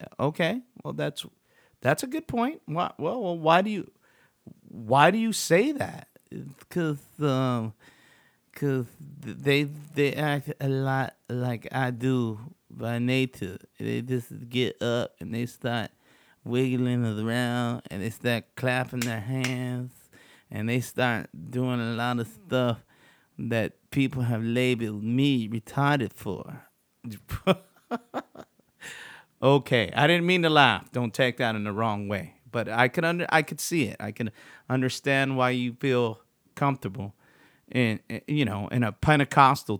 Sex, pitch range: male, 115-140 Hz